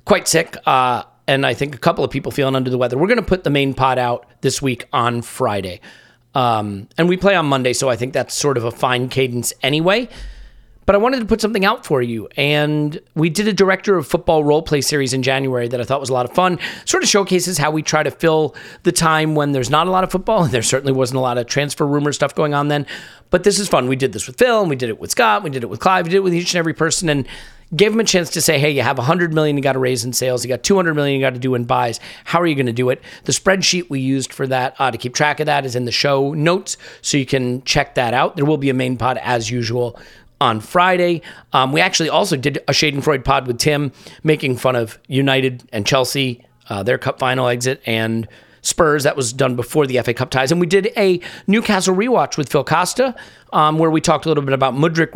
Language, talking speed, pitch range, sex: English, 270 wpm, 130-165 Hz, male